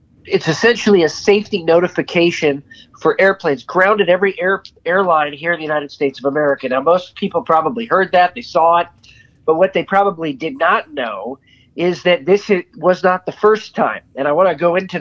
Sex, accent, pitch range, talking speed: male, American, 155-200 Hz, 190 wpm